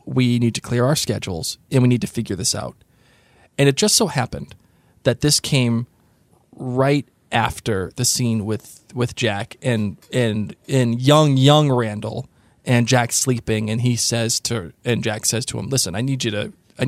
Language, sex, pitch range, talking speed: English, male, 115-145 Hz, 185 wpm